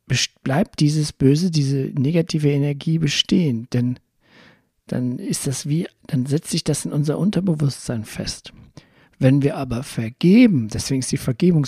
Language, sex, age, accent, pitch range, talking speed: German, male, 60-79, German, 120-155 Hz, 145 wpm